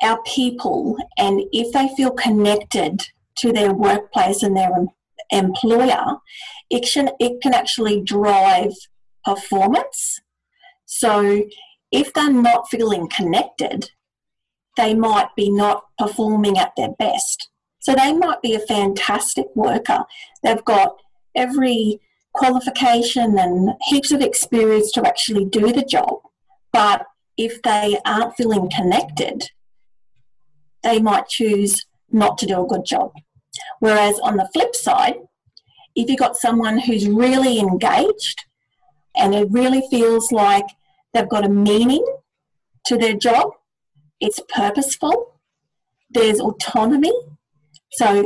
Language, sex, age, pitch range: English, female, 40-59, 205-270 Hz